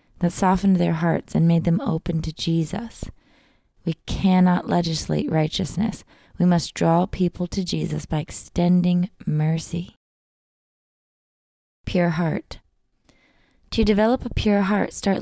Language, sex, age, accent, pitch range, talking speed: English, female, 20-39, American, 170-195 Hz, 120 wpm